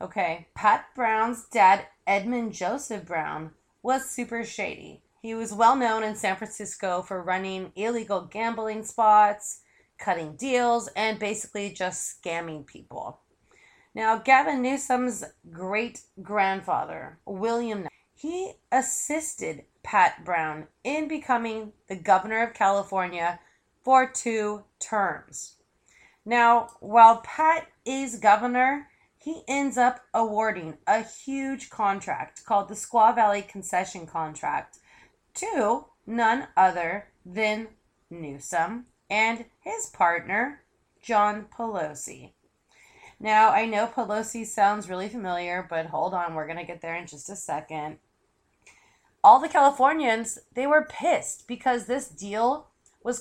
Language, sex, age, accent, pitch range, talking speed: English, female, 30-49, American, 185-240 Hz, 115 wpm